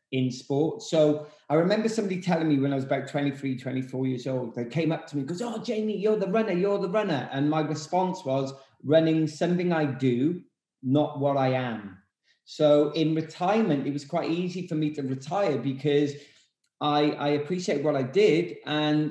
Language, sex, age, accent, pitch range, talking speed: English, male, 30-49, British, 135-165 Hz, 190 wpm